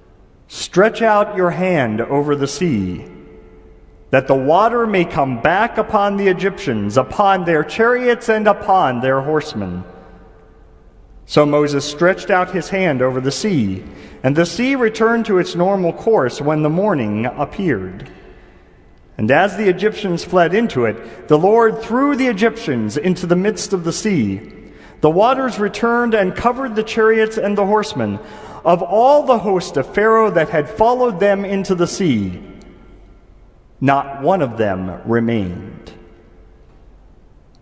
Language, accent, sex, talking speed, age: English, American, male, 145 wpm, 40-59